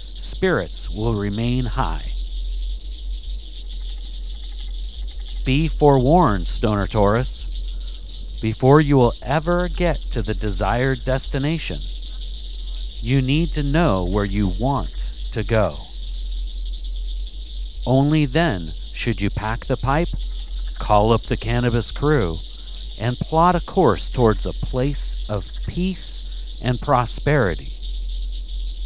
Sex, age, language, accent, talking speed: male, 50-69, English, American, 100 wpm